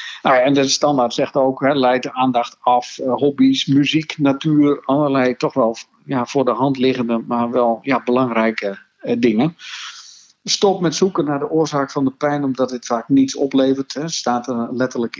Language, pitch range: Dutch, 115-140 Hz